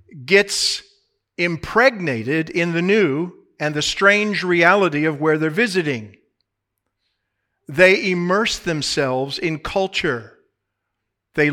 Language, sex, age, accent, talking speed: English, male, 50-69, American, 100 wpm